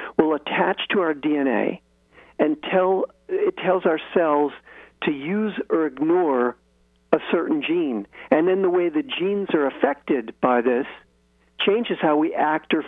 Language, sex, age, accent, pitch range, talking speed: English, male, 50-69, American, 120-195 Hz, 155 wpm